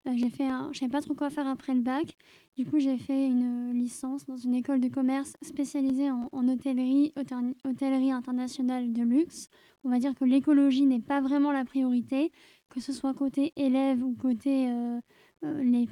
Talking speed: 185 wpm